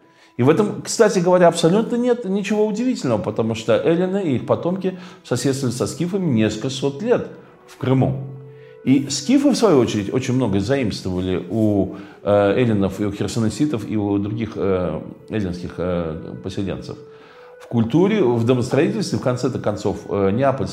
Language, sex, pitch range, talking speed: Russian, male, 100-150 Hz, 140 wpm